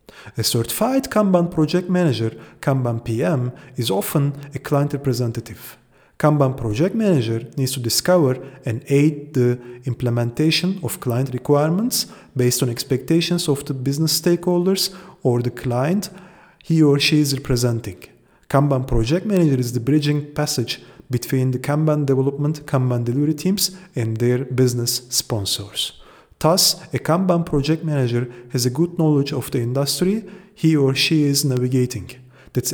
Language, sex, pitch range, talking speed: English, male, 125-170 Hz, 140 wpm